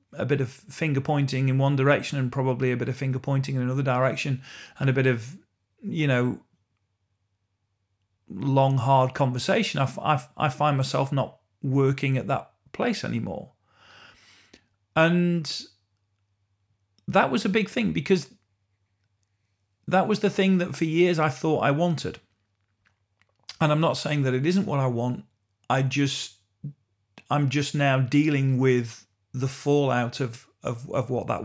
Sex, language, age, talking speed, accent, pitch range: male, English, 40-59, 150 wpm, British, 105-150 Hz